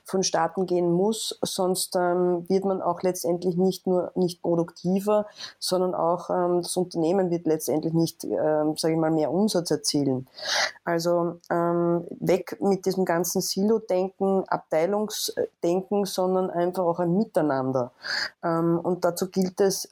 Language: German